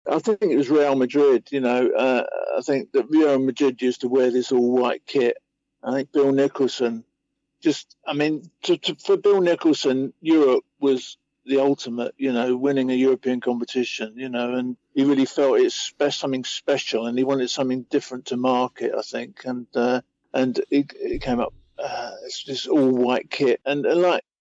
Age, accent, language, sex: 50-69, British, English, male